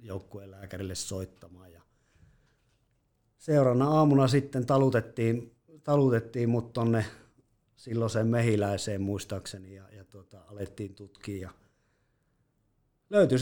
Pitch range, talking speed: 100-125 Hz, 80 wpm